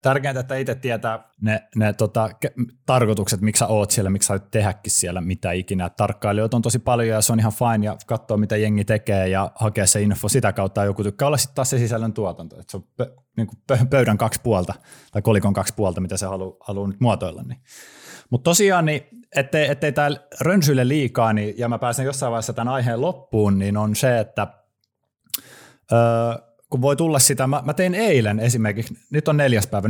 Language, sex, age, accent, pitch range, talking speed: Finnish, male, 20-39, native, 105-135 Hz, 205 wpm